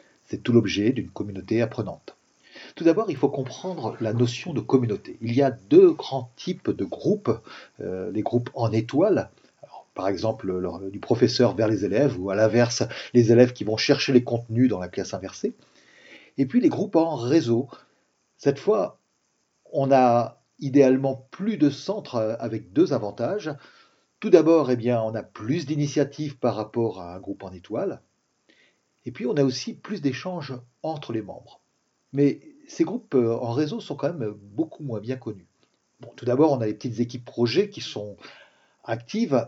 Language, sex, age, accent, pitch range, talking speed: French, male, 40-59, French, 115-145 Hz, 175 wpm